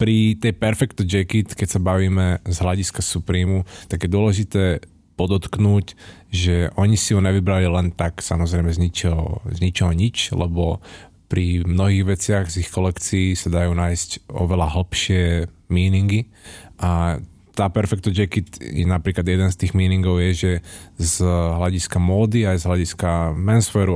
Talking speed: 145 wpm